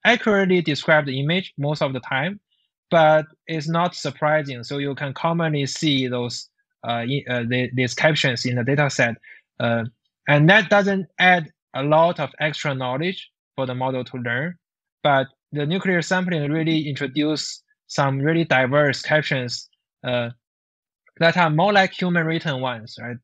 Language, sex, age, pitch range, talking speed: English, male, 20-39, 125-165 Hz, 155 wpm